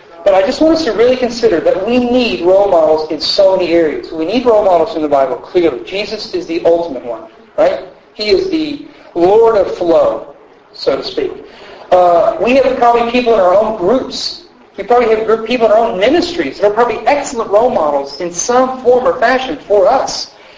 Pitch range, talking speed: 190-275 Hz, 215 wpm